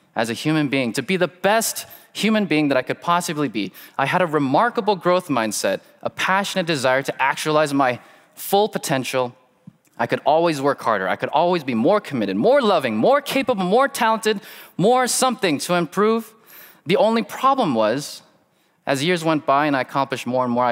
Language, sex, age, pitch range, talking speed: English, male, 20-39, 125-185 Hz, 185 wpm